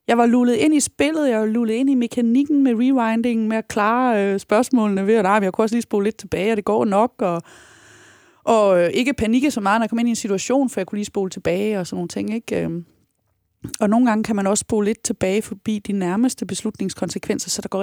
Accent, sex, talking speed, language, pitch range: native, female, 240 wpm, Danish, 195-235 Hz